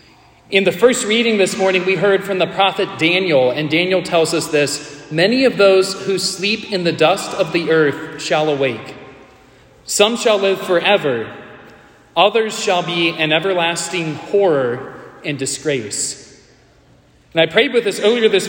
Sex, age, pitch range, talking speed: male, 30-49, 155-200 Hz, 160 wpm